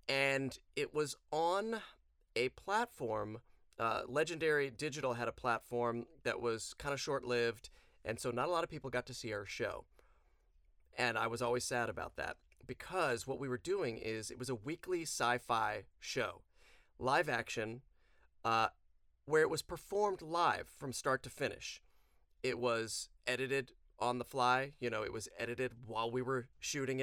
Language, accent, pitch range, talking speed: English, American, 120-145 Hz, 165 wpm